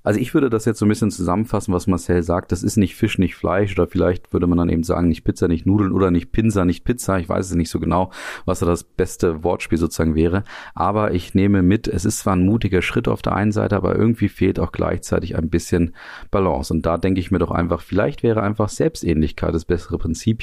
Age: 40-59